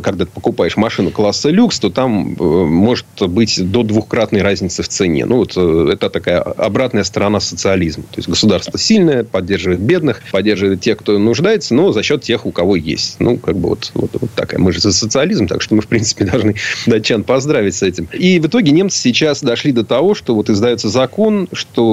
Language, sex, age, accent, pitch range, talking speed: Russian, male, 30-49, native, 100-130 Hz, 205 wpm